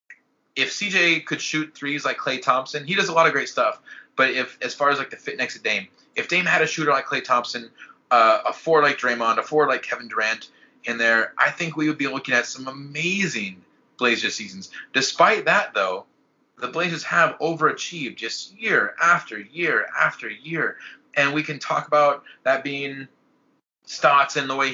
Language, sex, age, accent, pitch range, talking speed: English, male, 30-49, American, 130-160 Hz, 195 wpm